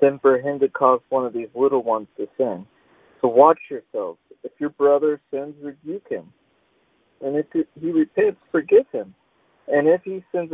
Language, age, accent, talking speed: English, 50-69, American, 175 wpm